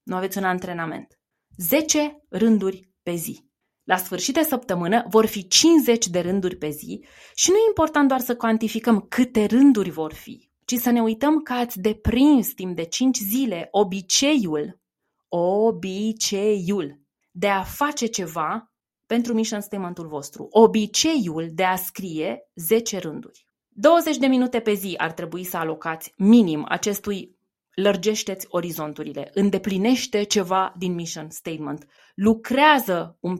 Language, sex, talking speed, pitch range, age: Romanian, female, 140 wpm, 180-245 Hz, 20-39